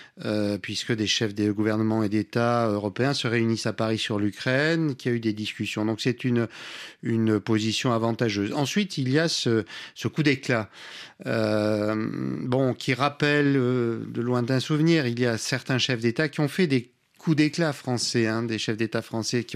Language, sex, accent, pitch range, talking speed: French, male, French, 115-145 Hz, 195 wpm